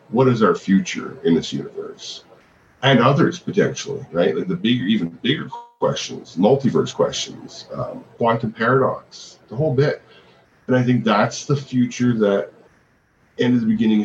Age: 40-59